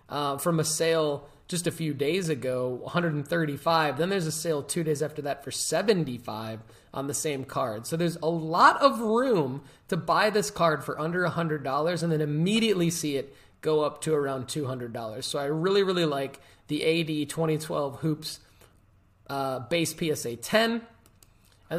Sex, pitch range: male, 140-165 Hz